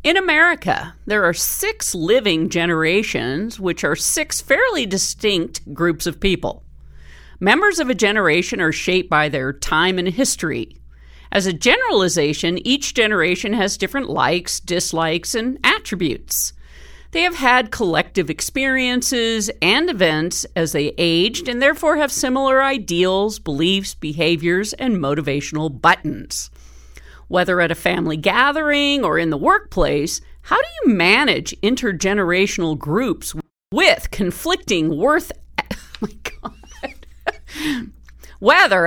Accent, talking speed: American, 120 wpm